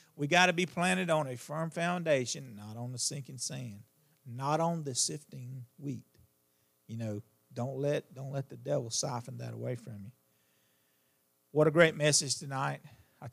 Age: 40-59